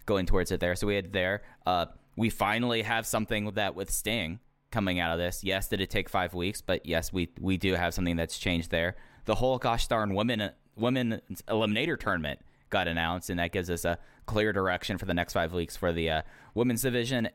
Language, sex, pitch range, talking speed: English, male, 95-115 Hz, 220 wpm